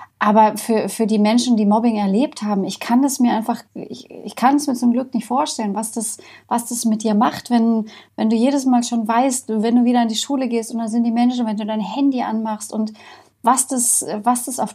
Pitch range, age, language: 200-240 Hz, 30-49, German